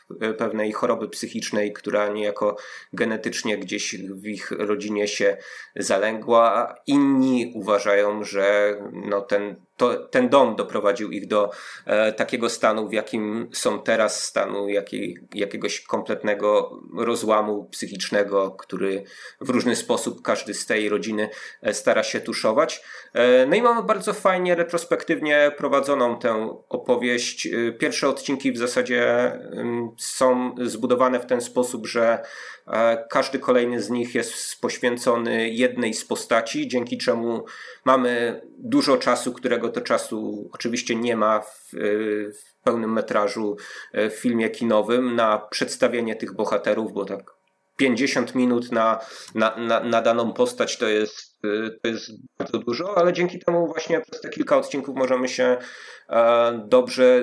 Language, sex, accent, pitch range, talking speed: Polish, male, native, 105-125 Hz, 125 wpm